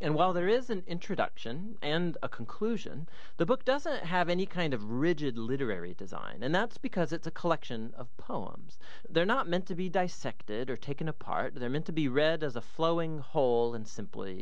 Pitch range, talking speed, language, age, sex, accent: 125-180 Hz, 195 wpm, English, 40-59, male, American